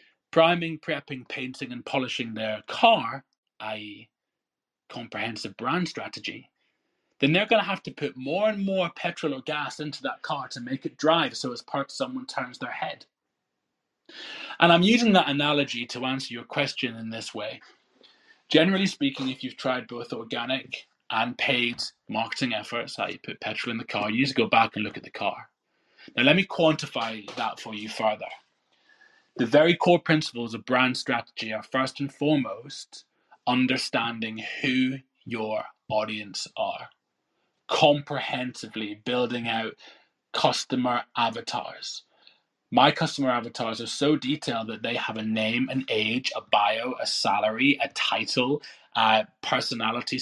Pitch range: 115-150 Hz